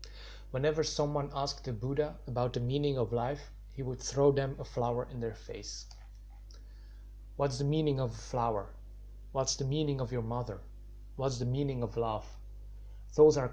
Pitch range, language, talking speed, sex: 110-140 Hz, English, 170 wpm, male